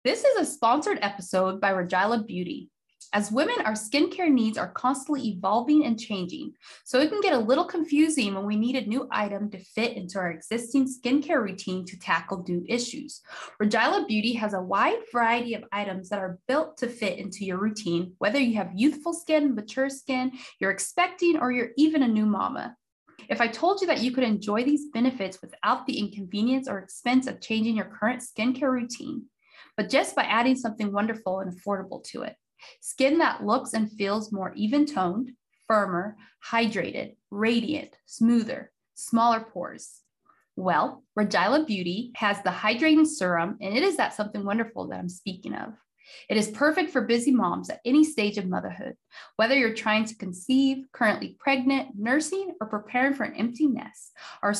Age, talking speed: 20-39, 175 wpm